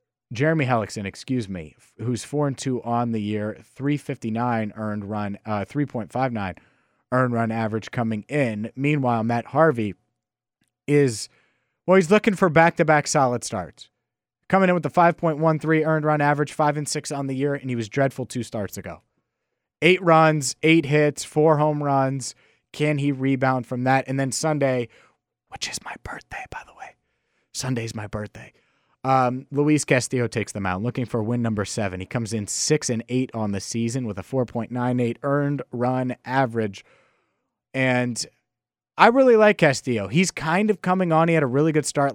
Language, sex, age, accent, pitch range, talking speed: English, male, 30-49, American, 110-145 Hz, 170 wpm